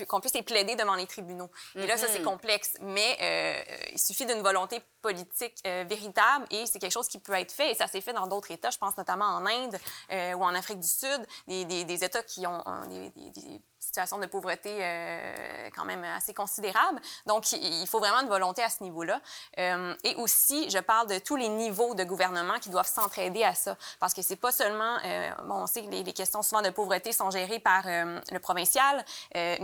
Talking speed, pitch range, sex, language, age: 225 wpm, 185-230 Hz, female, French, 20-39